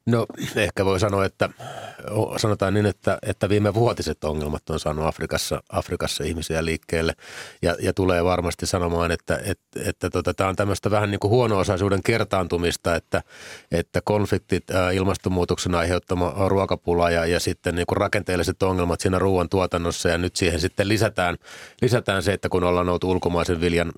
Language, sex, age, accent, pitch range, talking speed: Finnish, male, 30-49, native, 85-100 Hz, 165 wpm